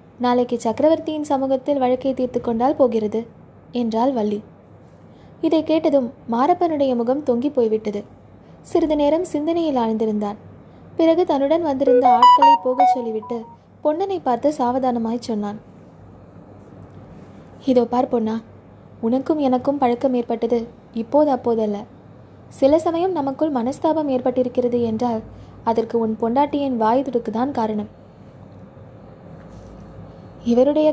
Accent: native